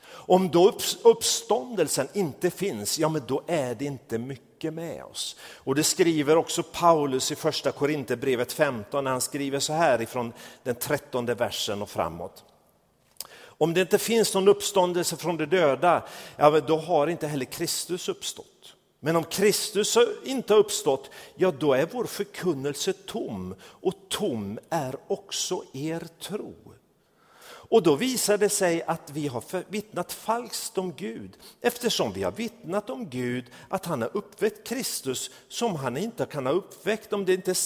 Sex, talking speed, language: male, 165 wpm, Swedish